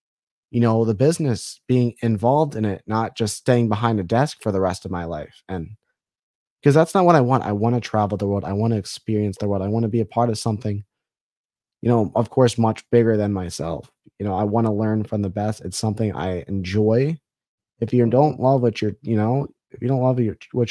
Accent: American